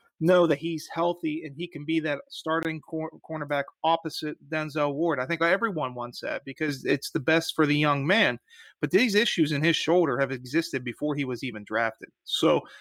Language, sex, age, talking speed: English, male, 30-49, 190 wpm